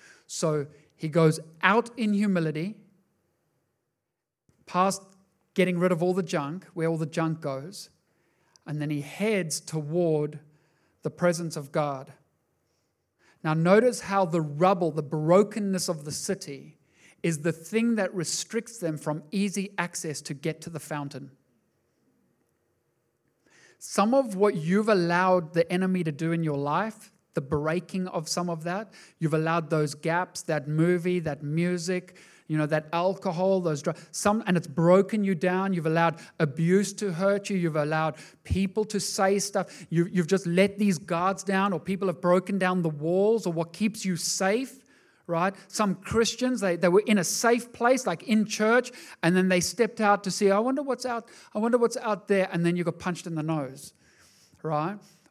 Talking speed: 170 wpm